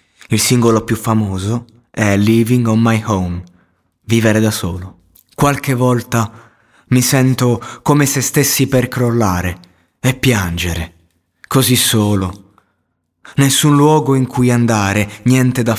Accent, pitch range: native, 90-120 Hz